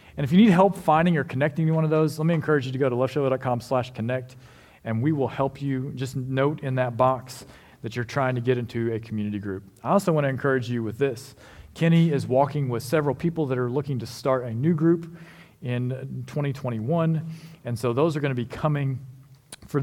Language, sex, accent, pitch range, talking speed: English, male, American, 120-160 Hz, 220 wpm